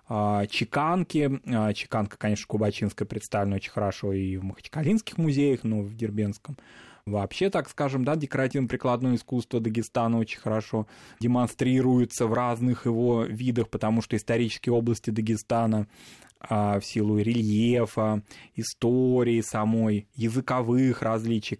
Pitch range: 110-130 Hz